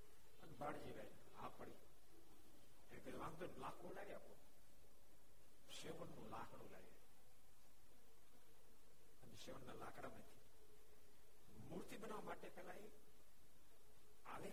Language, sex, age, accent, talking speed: Gujarati, male, 60-79, native, 50 wpm